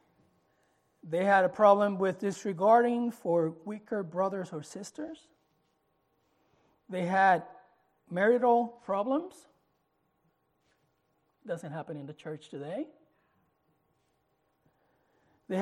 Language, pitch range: English, 165-235 Hz